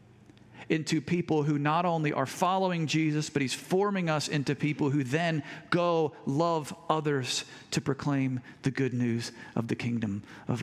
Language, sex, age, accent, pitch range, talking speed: English, male, 40-59, American, 115-145 Hz, 160 wpm